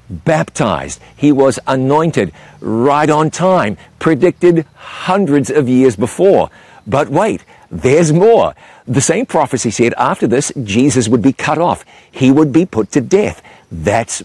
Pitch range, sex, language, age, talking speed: 115-150 Hz, male, English, 50-69, 145 wpm